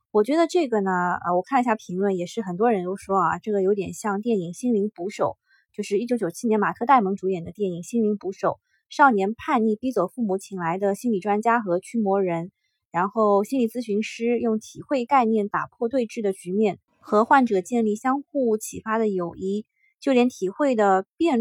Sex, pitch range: female, 190-245 Hz